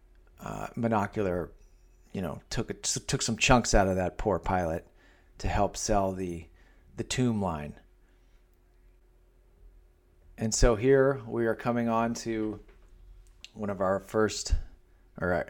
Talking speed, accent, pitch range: 125 wpm, American, 90-115 Hz